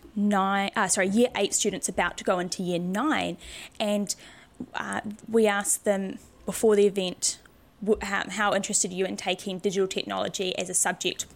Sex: female